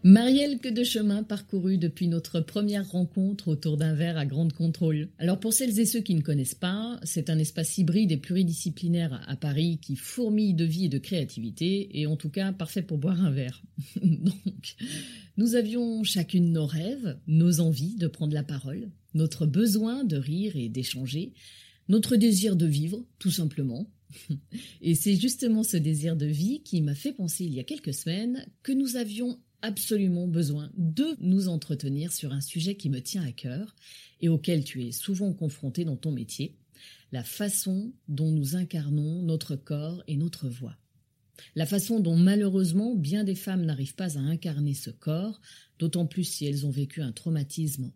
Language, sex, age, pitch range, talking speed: French, female, 30-49, 150-195 Hz, 180 wpm